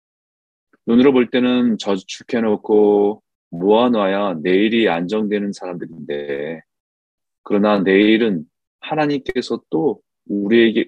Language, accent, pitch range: Korean, native, 100-130 Hz